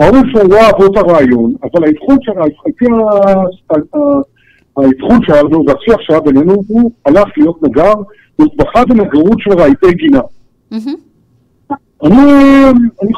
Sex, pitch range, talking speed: male, 140-225 Hz, 115 wpm